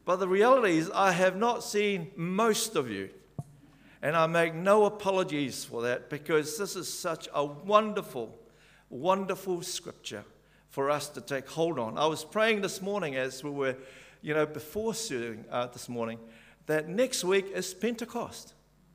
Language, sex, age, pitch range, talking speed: English, male, 50-69, 155-215 Hz, 160 wpm